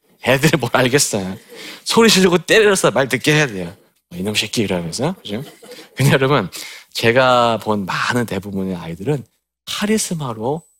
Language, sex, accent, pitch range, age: Korean, male, native, 105-160 Hz, 40-59